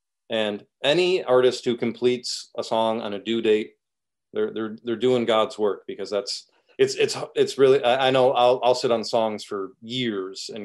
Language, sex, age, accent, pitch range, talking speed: English, male, 30-49, American, 105-140 Hz, 185 wpm